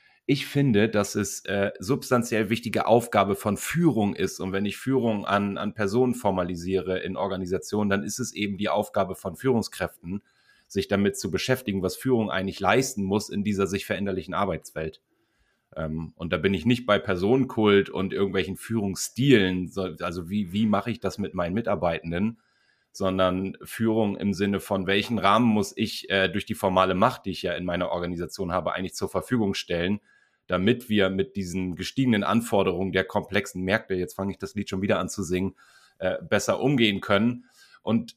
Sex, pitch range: male, 95-110 Hz